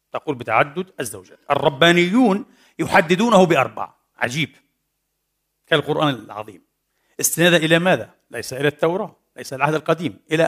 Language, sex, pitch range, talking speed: Arabic, male, 140-175 Hz, 110 wpm